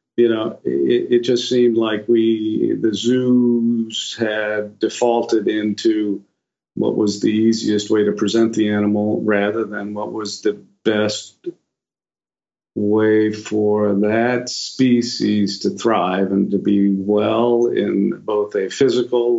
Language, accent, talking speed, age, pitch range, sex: English, American, 130 wpm, 50-69, 105-125 Hz, male